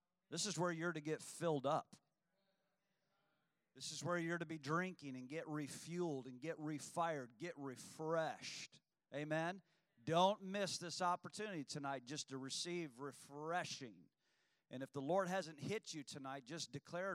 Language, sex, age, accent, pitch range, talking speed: English, male, 40-59, American, 140-180 Hz, 150 wpm